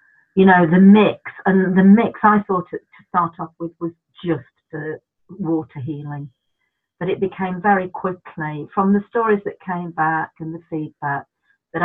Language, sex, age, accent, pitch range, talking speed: English, female, 50-69, British, 155-185 Hz, 170 wpm